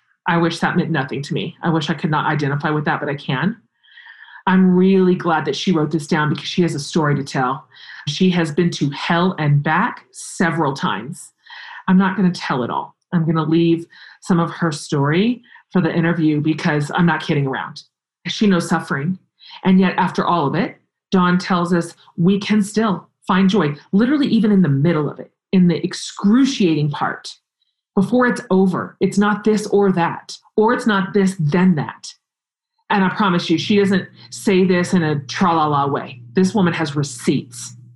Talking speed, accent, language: 195 wpm, American, English